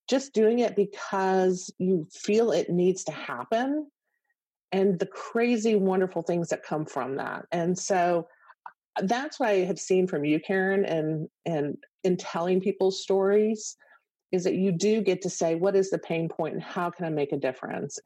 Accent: American